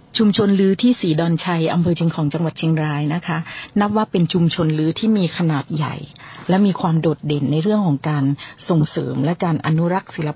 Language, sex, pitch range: Thai, female, 150-185 Hz